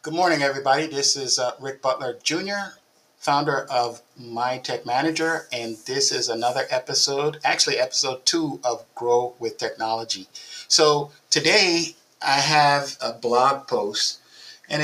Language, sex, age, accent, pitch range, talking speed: English, male, 50-69, American, 120-145 Hz, 140 wpm